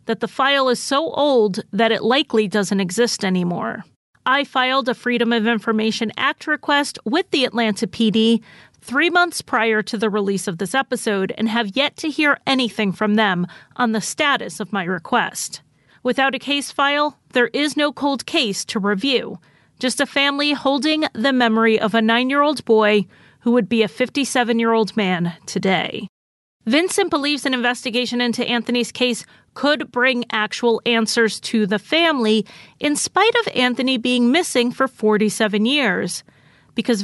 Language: English